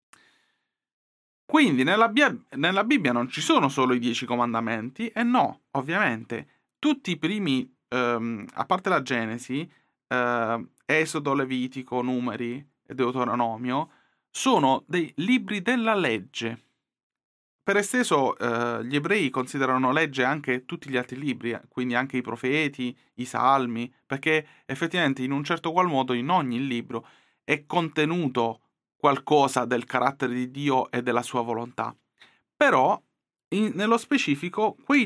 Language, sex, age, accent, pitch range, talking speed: Italian, male, 30-49, native, 125-175 Hz, 130 wpm